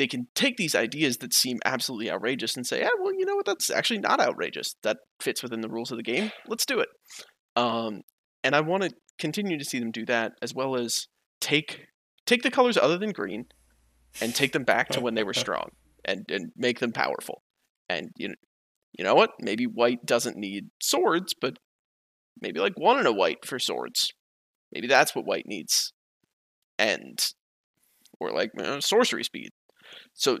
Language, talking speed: English, 195 wpm